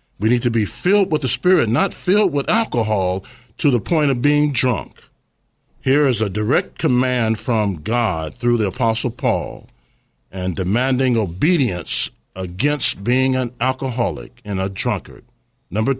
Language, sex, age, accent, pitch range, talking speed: English, male, 50-69, American, 110-145 Hz, 150 wpm